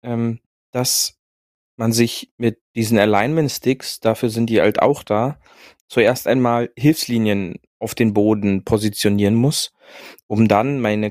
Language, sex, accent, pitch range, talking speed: German, male, German, 110-125 Hz, 125 wpm